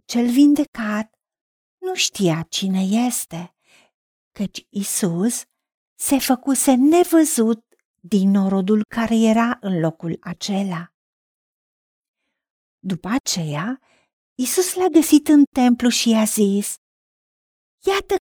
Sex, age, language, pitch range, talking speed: female, 50-69, Romanian, 200-275 Hz, 95 wpm